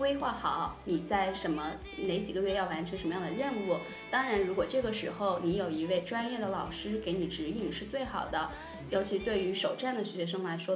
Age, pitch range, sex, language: 20-39, 180-220 Hz, female, Chinese